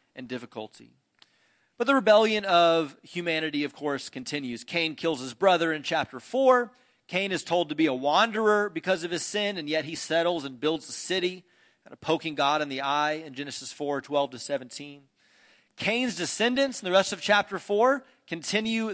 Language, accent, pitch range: English, American, 140-195 Hz